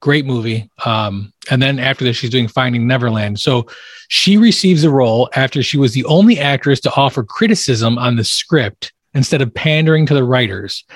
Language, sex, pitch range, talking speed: English, male, 125-155 Hz, 185 wpm